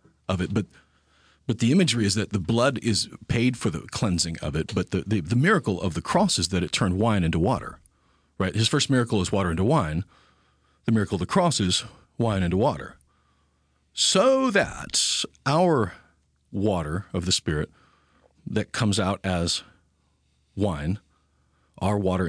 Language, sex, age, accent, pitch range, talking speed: English, male, 40-59, American, 80-120 Hz, 170 wpm